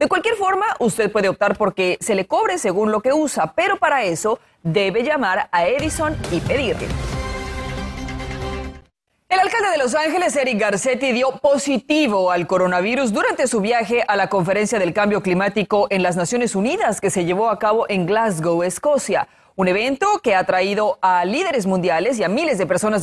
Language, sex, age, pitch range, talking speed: Spanish, female, 30-49, 185-260 Hz, 175 wpm